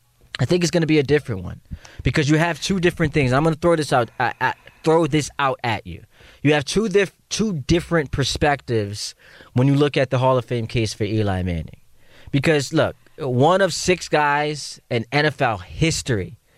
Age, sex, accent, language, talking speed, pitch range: 20-39, male, American, English, 205 wpm, 120-150 Hz